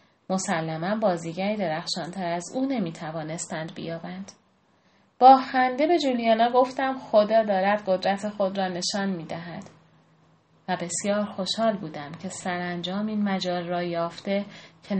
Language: Persian